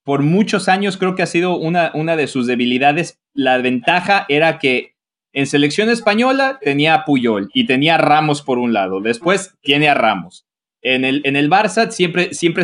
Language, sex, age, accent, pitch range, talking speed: English, male, 30-49, Mexican, 130-170 Hz, 190 wpm